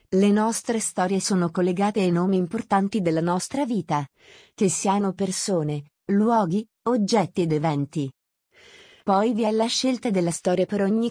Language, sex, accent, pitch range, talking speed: Italian, female, native, 175-220 Hz, 145 wpm